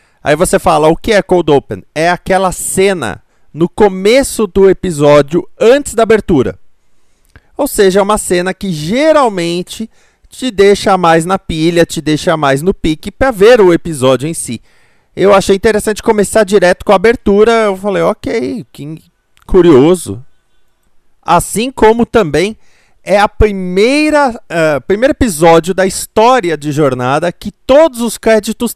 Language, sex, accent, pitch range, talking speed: Portuguese, male, Brazilian, 150-220 Hz, 145 wpm